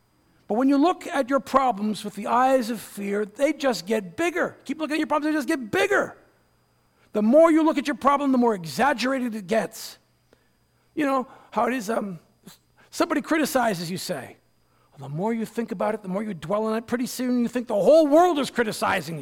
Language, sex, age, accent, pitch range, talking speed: English, male, 50-69, American, 200-275 Hz, 210 wpm